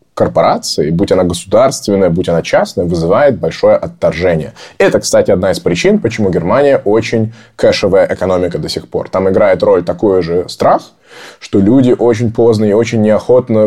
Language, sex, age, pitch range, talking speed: Russian, male, 20-39, 100-140 Hz, 160 wpm